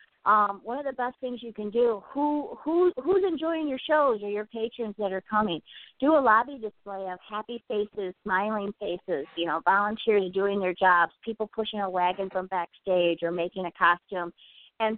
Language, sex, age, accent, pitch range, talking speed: English, female, 50-69, American, 175-215 Hz, 190 wpm